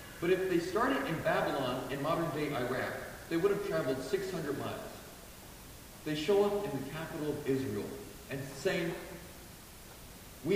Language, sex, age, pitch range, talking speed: English, male, 40-59, 130-195 Hz, 150 wpm